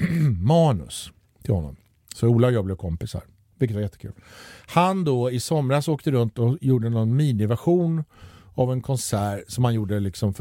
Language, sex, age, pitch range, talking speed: Swedish, male, 50-69, 105-170 Hz, 175 wpm